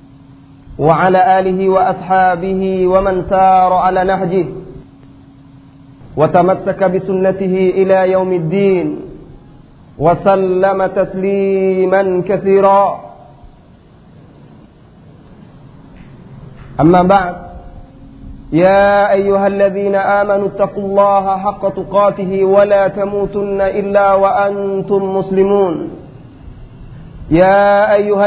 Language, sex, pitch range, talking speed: English, male, 185-210 Hz, 70 wpm